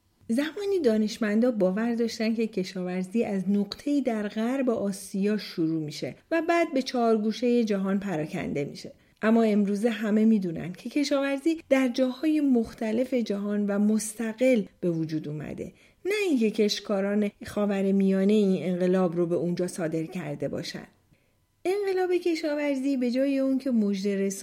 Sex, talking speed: female, 135 wpm